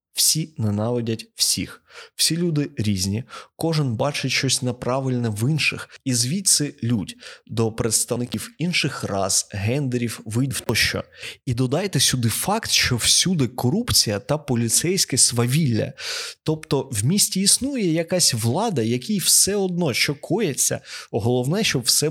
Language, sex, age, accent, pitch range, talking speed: Ukrainian, male, 20-39, native, 115-160 Hz, 130 wpm